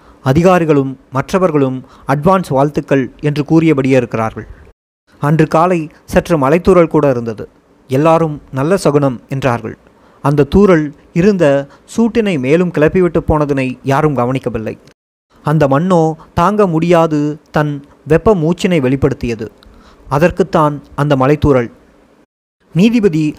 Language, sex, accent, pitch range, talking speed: Tamil, male, native, 135-175 Hz, 95 wpm